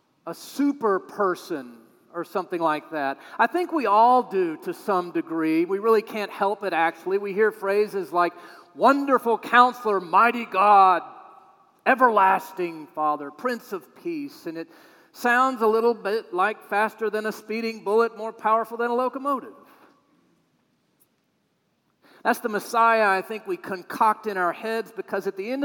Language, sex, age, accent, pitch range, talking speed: English, male, 40-59, American, 175-235 Hz, 150 wpm